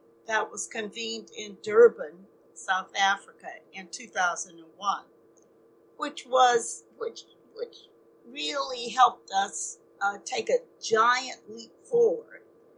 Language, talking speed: English, 105 wpm